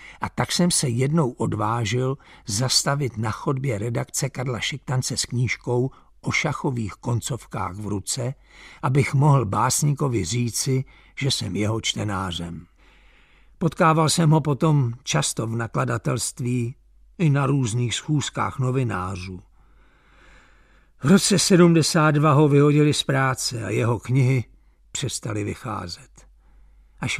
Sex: male